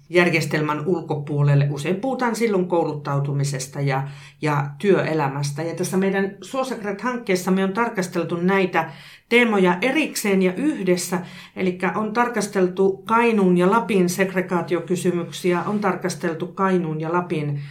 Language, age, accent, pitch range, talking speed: Finnish, 50-69, native, 150-195 Hz, 115 wpm